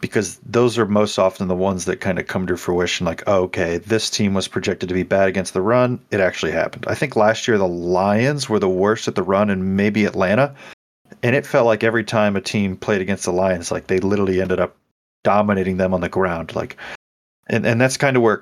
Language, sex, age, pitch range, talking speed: English, male, 30-49, 90-110 Hz, 240 wpm